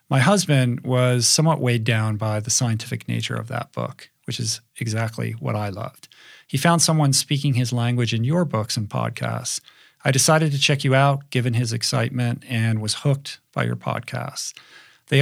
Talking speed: 180 wpm